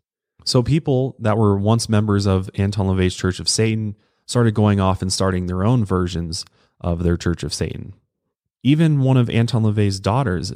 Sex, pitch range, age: male, 95-115 Hz, 20-39